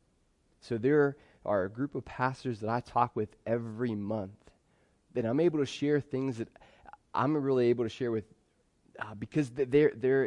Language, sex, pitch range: English, male, 105-135 Hz